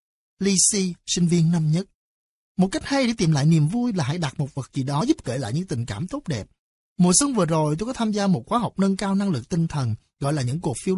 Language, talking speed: Vietnamese, 280 wpm